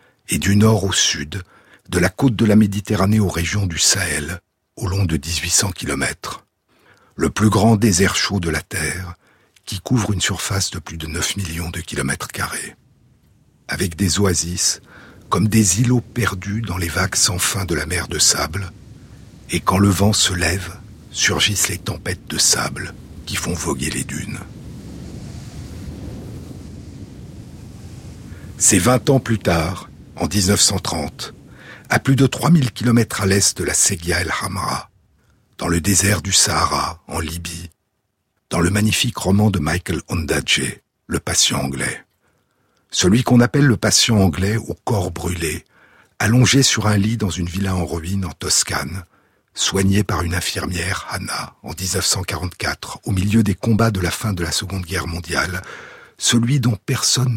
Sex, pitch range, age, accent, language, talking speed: male, 90-110 Hz, 60-79, French, French, 160 wpm